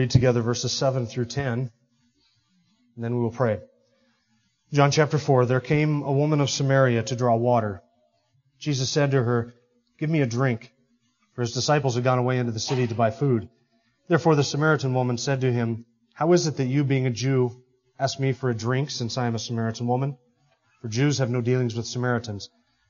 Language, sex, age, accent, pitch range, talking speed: English, male, 30-49, American, 120-140 Hz, 200 wpm